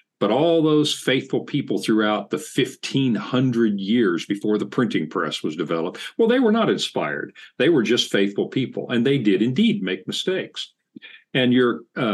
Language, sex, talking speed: English, male, 165 wpm